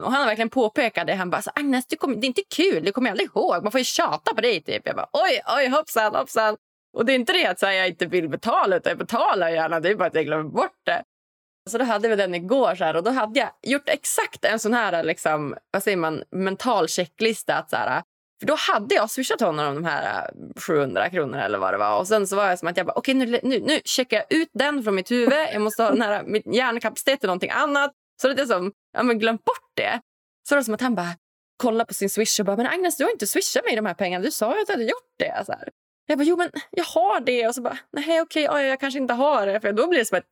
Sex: female